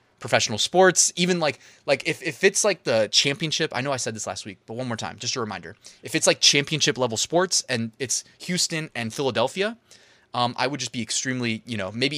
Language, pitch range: English, 110-145 Hz